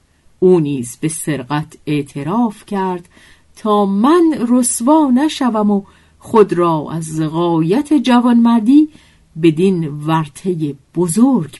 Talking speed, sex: 105 wpm, female